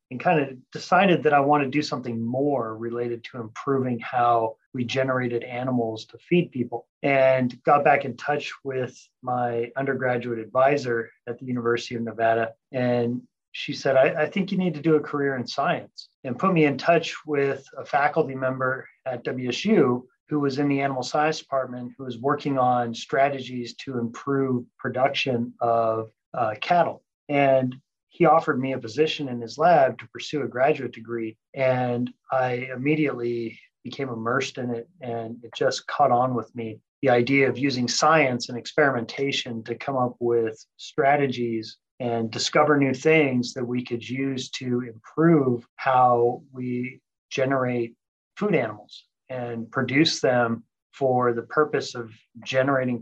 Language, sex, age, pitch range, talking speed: English, male, 30-49, 120-140 Hz, 160 wpm